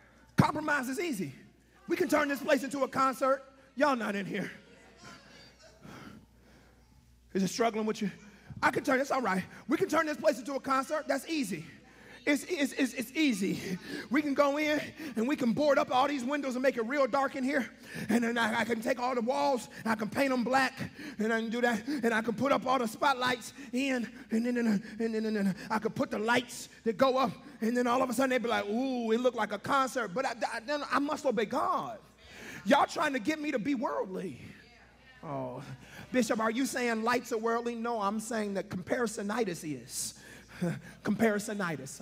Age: 30-49